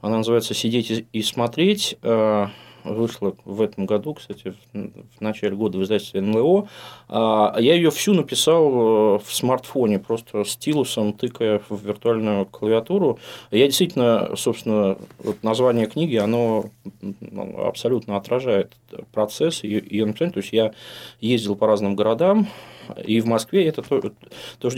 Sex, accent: male, native